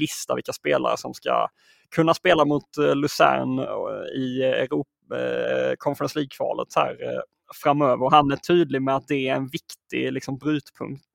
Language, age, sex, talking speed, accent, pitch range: Swedish, 20-39, male, 165 wpm, native, 130-150 Hz